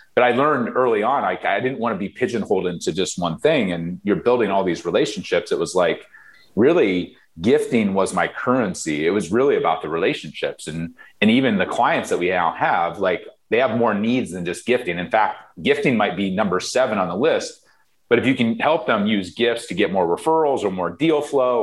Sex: male